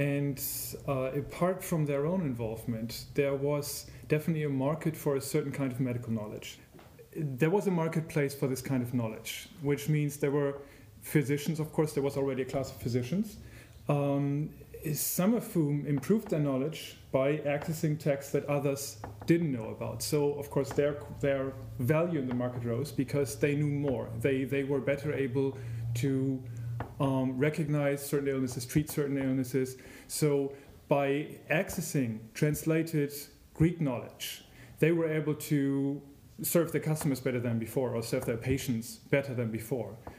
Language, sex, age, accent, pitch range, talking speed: English, male, 30-49, German, 125-150 Hz, 160 wpm